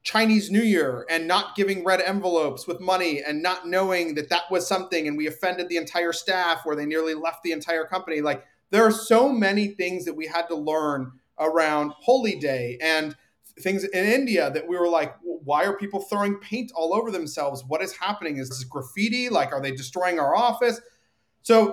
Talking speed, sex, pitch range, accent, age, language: 200 wpm, male, 150-205 Hz, American, 30-49, English